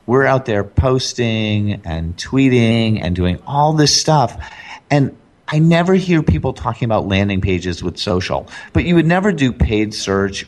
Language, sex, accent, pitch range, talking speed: English, male, American, 90-130 Hz, 165 wpm